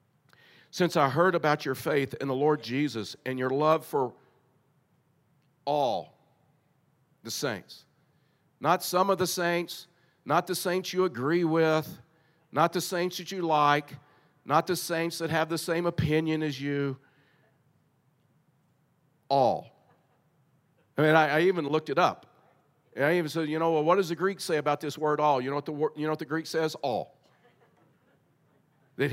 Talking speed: 165 wpm